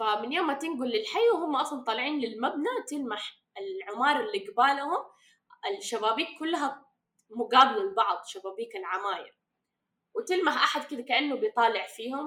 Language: Arabic